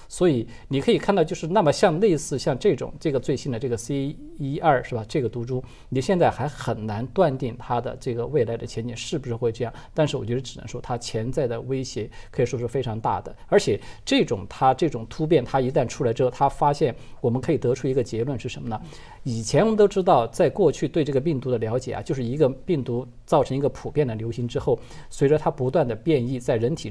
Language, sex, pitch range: Chinese, male, 120-155 Hz